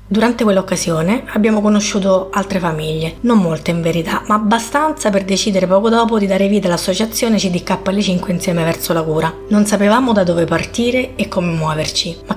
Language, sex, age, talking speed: Italian, female, 30-49, 170 wpm